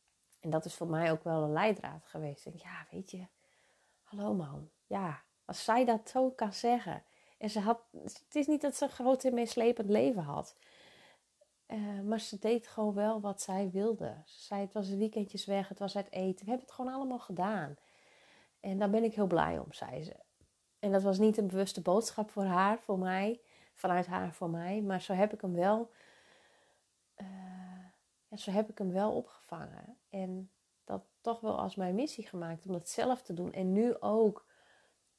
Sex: female